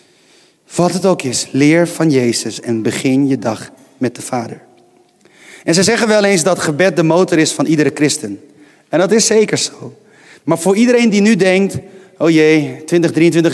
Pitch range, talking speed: 155-205 Hz, 180 wpm